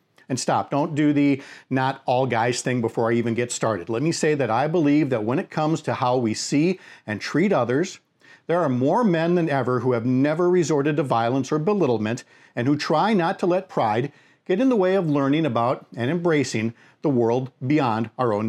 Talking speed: 215 wpm